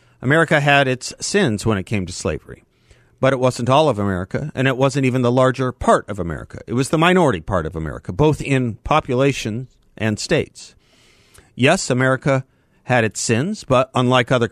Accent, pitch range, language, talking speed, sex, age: American, 110-150 Hz, English, 180 wpm, male, 50-69